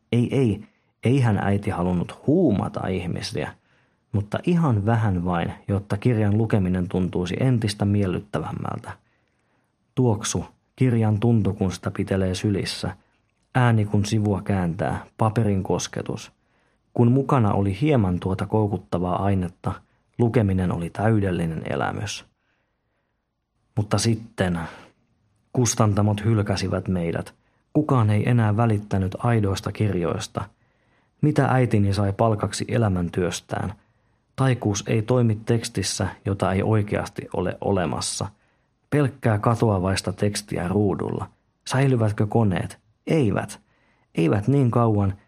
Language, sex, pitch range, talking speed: Finnish, male, 95-115 Hz, 100 wpm